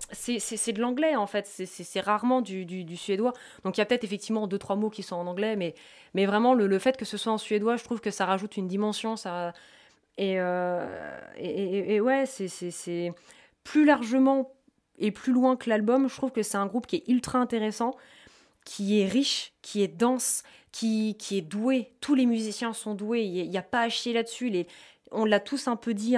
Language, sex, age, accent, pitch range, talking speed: Dutch, female, 20-39, French, 195-240 Hz, 235 wpm